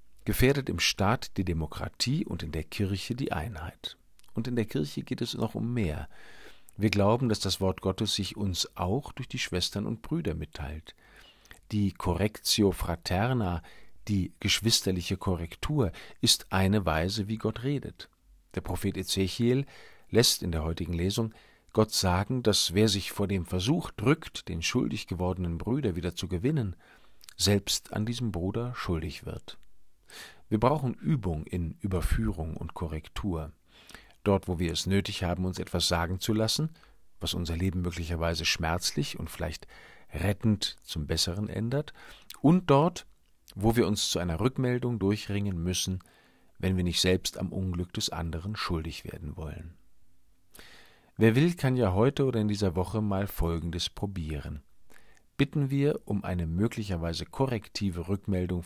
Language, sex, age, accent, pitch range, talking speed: German, male, 50-69, German, 85-110 Hz, 150 wpm